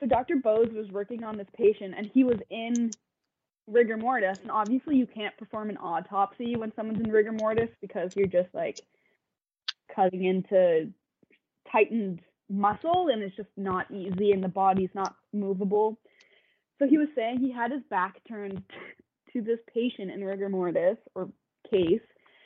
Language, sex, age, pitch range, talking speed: English, female, 20-39, 200-255 Hz, 165 wpm